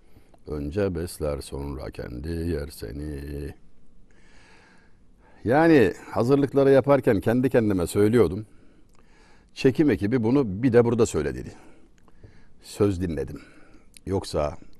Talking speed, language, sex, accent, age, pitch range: 90 wpm, Turkish, male, native, 60-79, 90-130 Hz